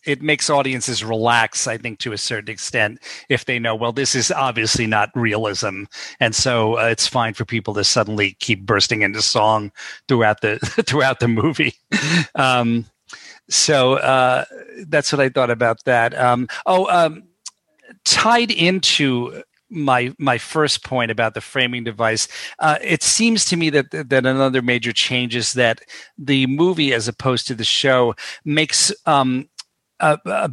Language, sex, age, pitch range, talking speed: English, male, 50-69, 115-140 Hz, 160 wpm